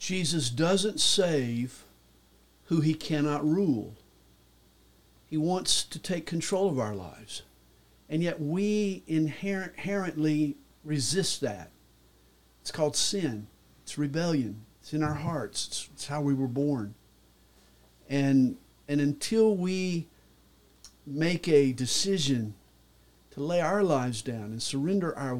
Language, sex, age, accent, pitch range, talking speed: English, male, 50-69, American, 120-175 Hz, 120 wpm